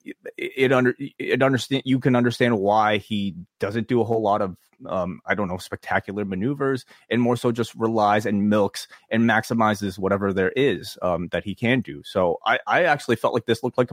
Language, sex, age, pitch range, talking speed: English, male, 30-49, 100-120 Hz, 205 wpm